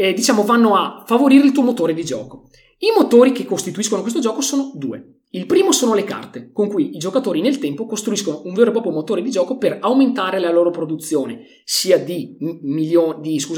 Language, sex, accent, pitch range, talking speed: Italian, male, native, 160-250 Hz, 200 wpm